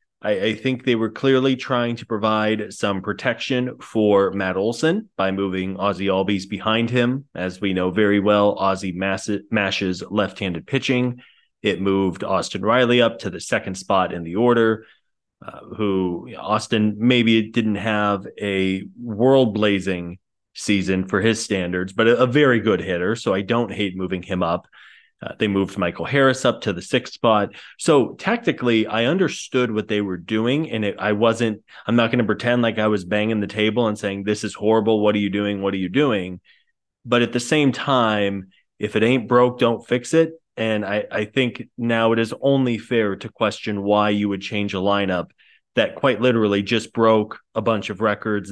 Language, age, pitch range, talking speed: English, 30-49, 100-120 Hz, 185 wpm